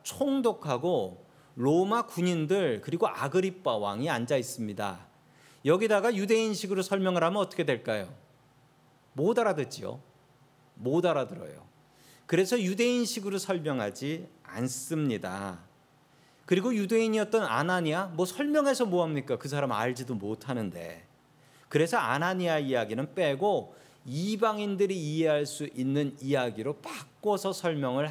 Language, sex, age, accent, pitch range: Korean, male, 40-59, native, 140-215 Hz